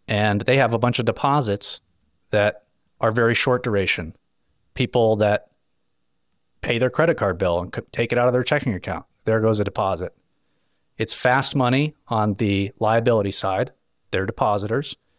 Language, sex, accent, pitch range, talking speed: English, male, American, 100-125 Hz, 160 wpm